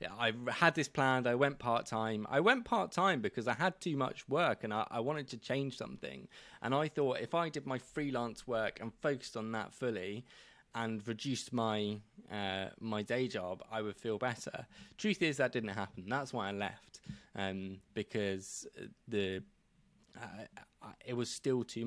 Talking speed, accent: 190 wpm, British